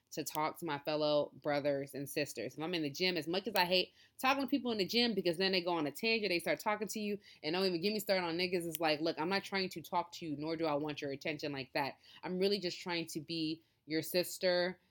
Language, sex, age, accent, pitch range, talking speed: English, female, 20-39, American, 150-190 Hz, 280 wpm